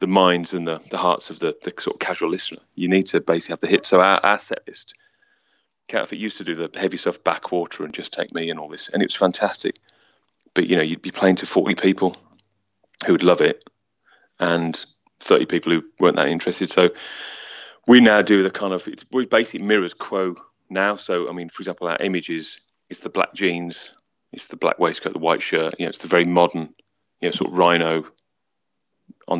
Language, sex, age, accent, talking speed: English, male, 30-49, British, 220 wpm